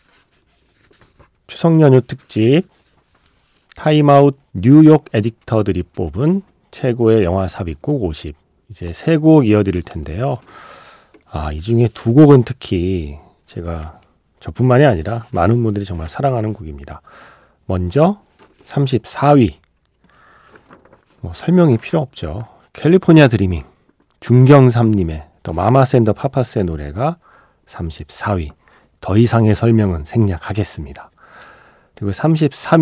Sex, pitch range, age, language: male, 90-140 Hz, 40-59, Korean